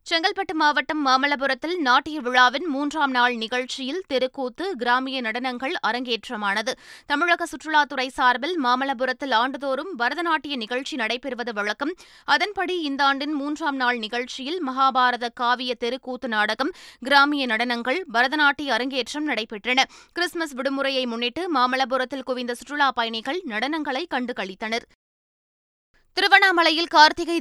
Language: Tamil